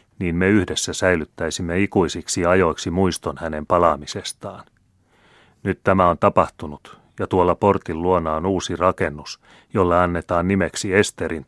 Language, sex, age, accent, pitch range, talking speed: Finnish, male, 30-49, native, 80-95 Hz, 125 wpm